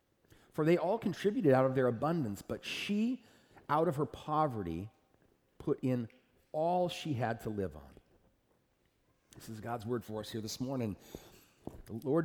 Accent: American